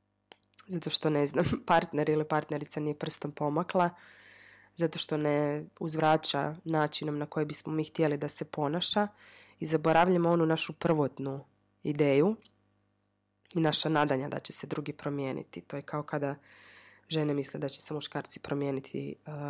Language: Croatian